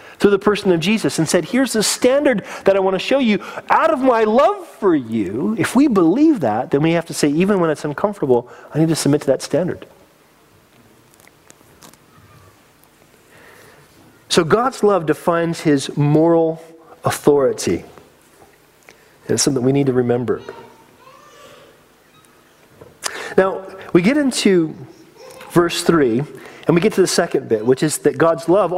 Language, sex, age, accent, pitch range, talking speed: English, male, 40-59, American, 160-235 Hz, 150 wpm